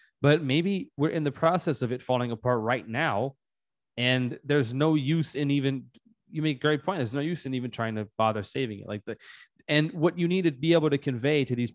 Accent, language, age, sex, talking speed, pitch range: American, English, 30-49, male, 235 wpm, 120-150 Hz